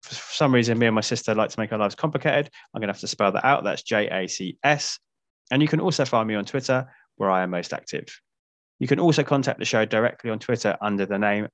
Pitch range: 105-140 Hz